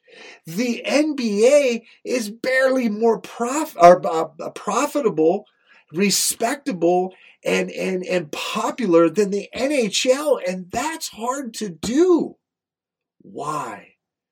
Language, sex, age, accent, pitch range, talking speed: English, male, 40-59, American, 145-220 Hz, 95 wpm